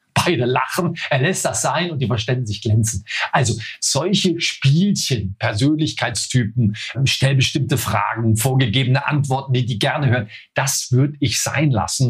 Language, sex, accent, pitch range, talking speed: German, male, German, 125-185 Hz, 145 wpm